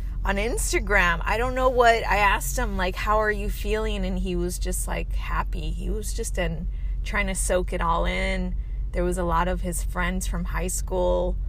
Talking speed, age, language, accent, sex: 210 wpm, 20-39, English, American, female